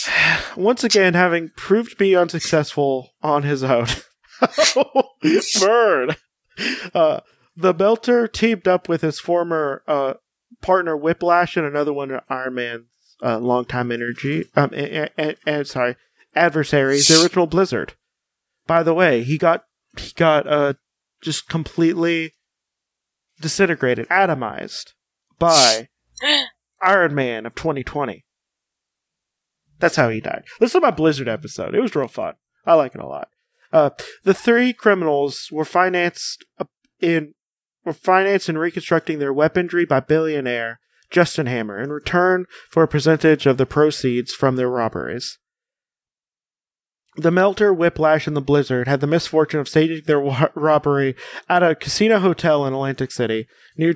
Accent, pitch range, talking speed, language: American, 140-175 Hz, 135 wpm, English